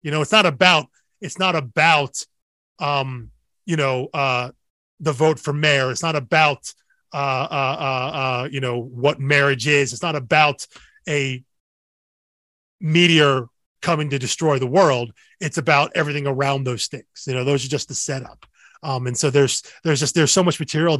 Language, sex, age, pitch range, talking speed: English, male, 20-39, 135-165 Hz, 175 wpm